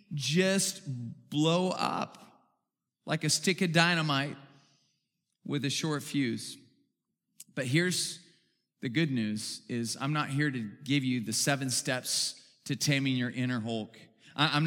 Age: 40-59